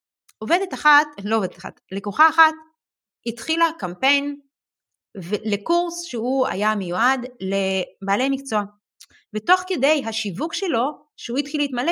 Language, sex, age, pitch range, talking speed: Hebrew, female, 30-49, 195-300 Hz, 110 wpm